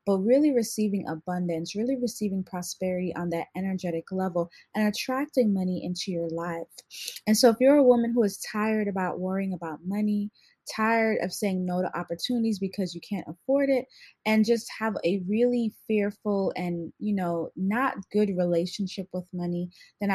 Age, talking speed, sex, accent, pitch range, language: 20-39, 165 wpm, female, American, 180-230 Hz, English